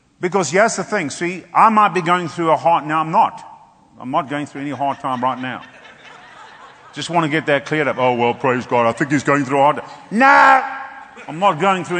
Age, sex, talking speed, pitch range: 50-69, male, 240 wpm, 155-210 Hz